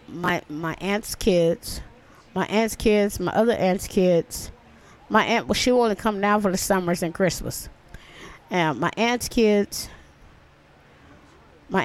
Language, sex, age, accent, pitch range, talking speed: English, female, 20-39, American, 170-205 Hz, 145 wpm